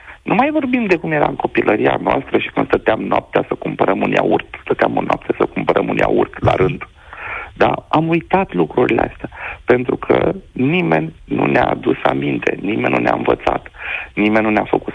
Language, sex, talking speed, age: Romanian, male, 185 wpm, 50-69